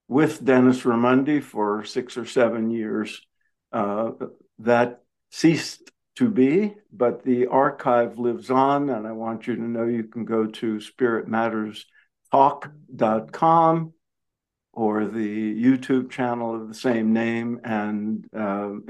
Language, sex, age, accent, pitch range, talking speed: English, male, 60-79, American, 110-130 Hz, 125 wpm